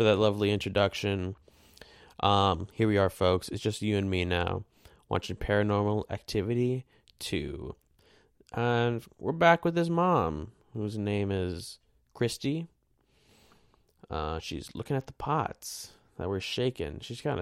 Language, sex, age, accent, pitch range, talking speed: English, male, 20-39, American, 90-115 Hz, 135 wpm